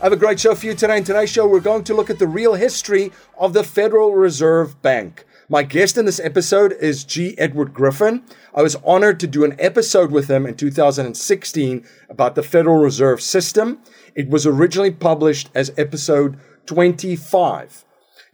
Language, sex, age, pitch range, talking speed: English, male, 40-59, 140-185 Hz, 185 wpm